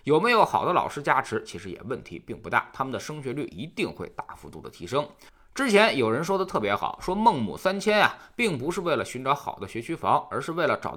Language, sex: Chinese, male